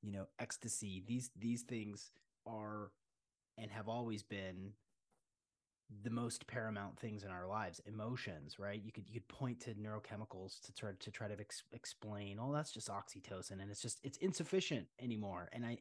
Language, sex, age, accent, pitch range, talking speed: English, male, 30-49, American, 100-115 Hz, 180 wpm